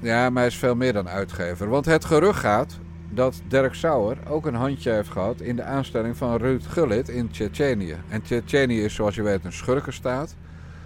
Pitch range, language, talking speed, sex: 95-120 Hz, Dutch, 200 wpm, male